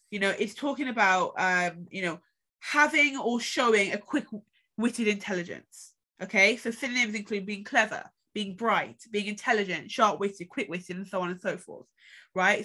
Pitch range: 200-265 Hz